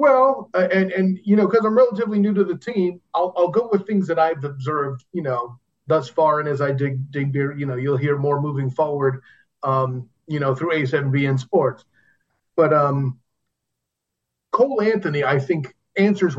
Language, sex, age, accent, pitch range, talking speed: English, male, 40-59, American, 140-210 Hz, 180 wpm